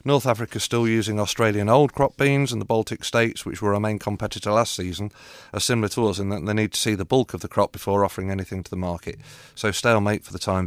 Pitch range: 100-120 Hz